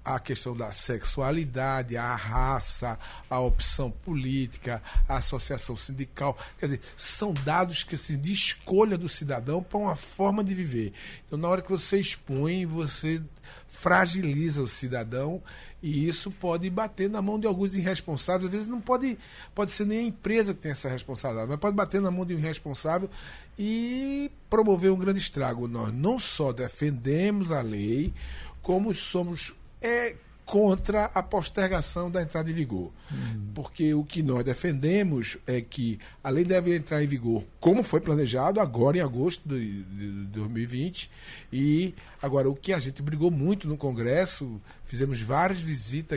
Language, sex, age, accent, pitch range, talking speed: Portuguese, male, 60-79, Brazilian, 130-180 Hz, 155 wpm